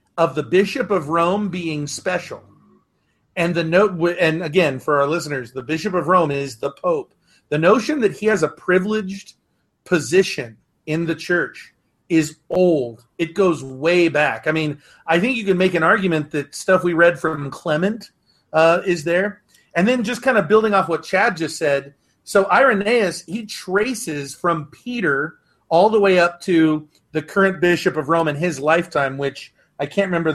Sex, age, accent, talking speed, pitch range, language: male, 40-59, American, 180 wpm, 150-190 Hz, English